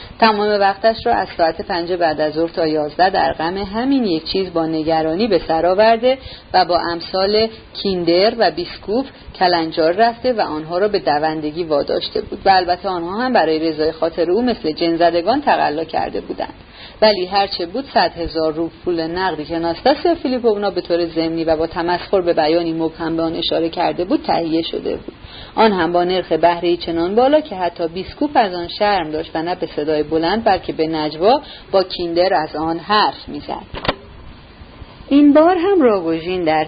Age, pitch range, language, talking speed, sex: 40-59, 165-220 Hz, Persian, 180 wpm, female